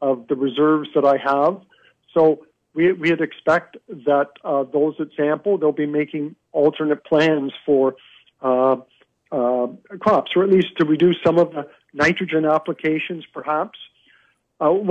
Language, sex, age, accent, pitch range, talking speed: English, male, 50-69, American, 145-170 Hz, 145 wpm